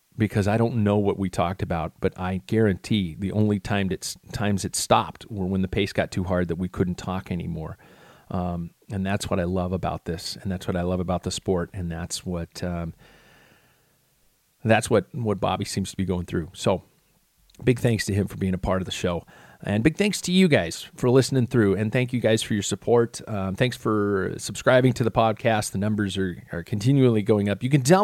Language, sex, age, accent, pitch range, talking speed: English, male, 40-59, American, 95-115 Hz, 215 wpm